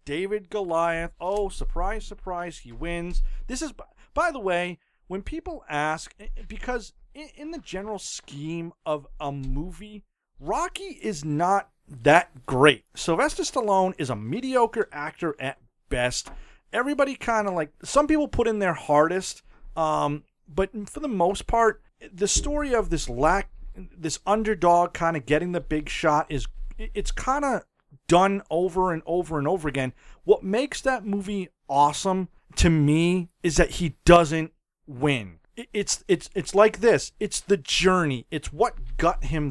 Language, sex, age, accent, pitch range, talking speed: English, male, 40-59, American, 155-220 Hz, 150 wpm